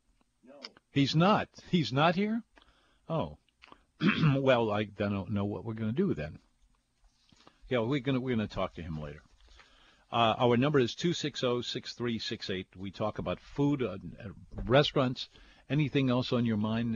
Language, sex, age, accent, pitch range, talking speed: English, male, 50-69, American, 105-140 Hz, 150 wpm